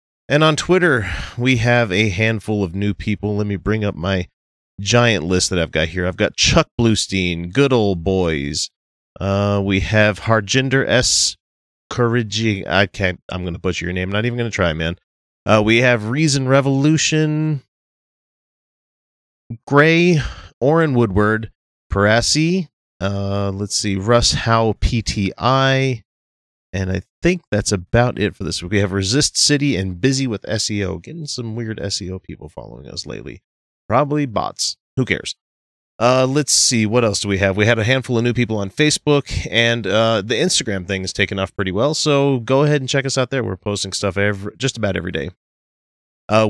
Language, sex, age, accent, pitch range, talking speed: English, male, 30-49, American, 95-125 Hz, 175 wpm